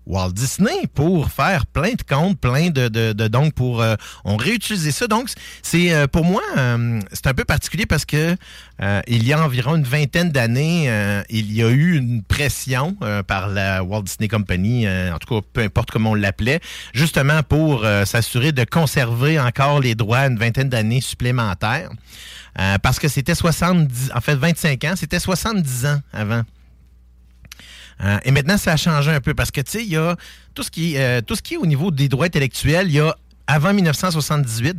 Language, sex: French, male